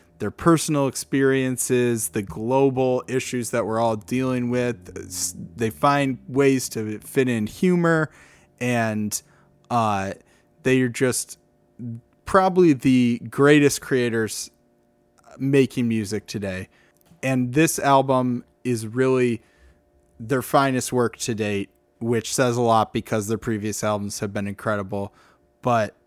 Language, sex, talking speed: English, male, 120 wpm